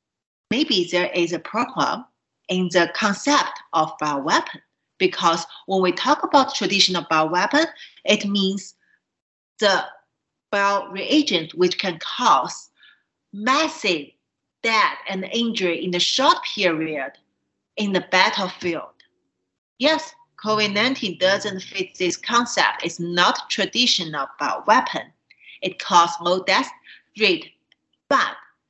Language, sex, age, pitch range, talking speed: English, female, 40-59, 170-220 Hz, 115 wpm